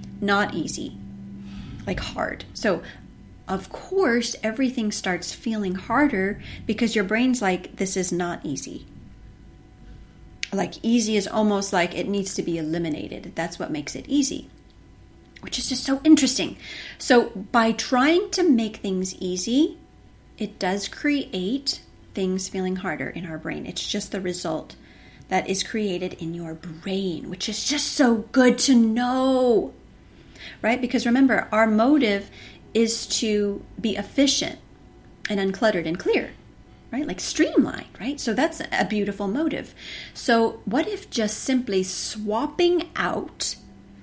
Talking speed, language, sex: 140 wpm, English, female